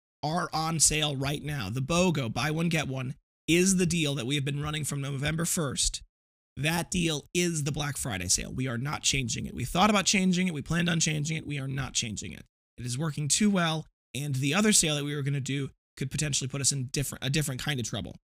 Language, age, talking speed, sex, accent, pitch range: English, 20-39, 240 wpm, male, American, 135-165 Hz